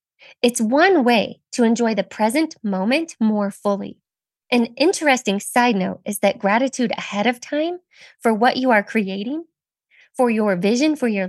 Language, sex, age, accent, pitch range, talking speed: English, female, 20-39, American, 200-270 Hz, 160 wpm